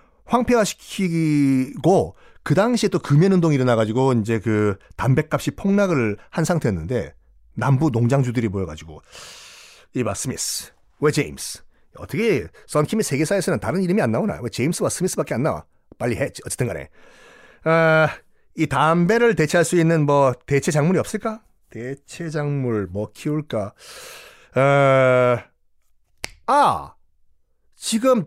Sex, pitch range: male, 130-200 Hz